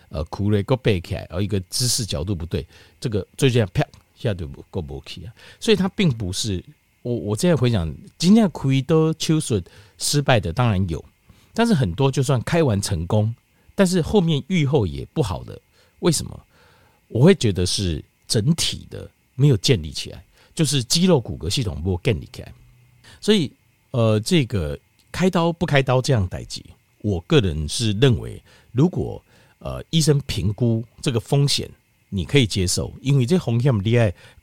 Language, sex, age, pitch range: Chinese, male, 50-69, 100-145 Hz